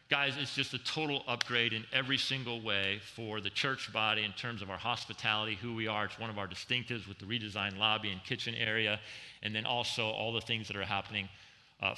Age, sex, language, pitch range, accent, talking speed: 40-59, male, English, 105-125 Hz, American, 220 wpm